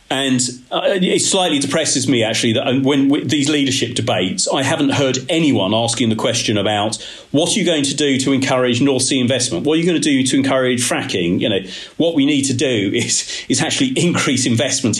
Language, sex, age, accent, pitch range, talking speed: English, male, 40-59, British, 110-130 Hz, 210 wpm